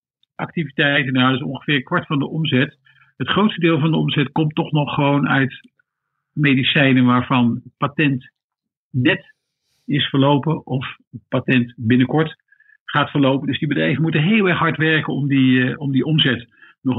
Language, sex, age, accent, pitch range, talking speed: Dutch, male, 50-69, Dutch, 130-165 Hz, 150 wpm